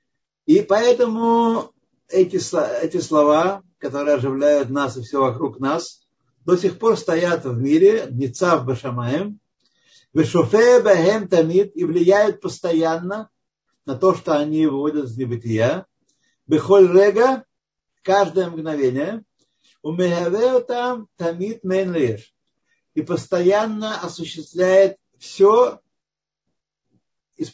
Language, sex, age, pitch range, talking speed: Russian, male, 50-69, 140-205 Hz, 80 wpm